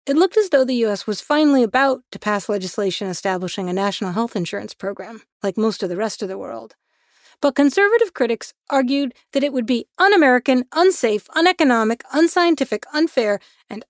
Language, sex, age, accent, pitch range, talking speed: English, female, 40-59, American, 190-260 Hz, 175 wpm